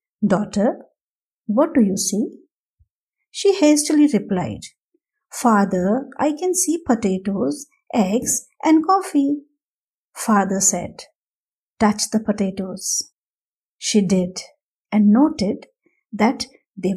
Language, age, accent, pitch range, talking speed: English, 50-69, Indian, 200-275 Hz, 95 wpm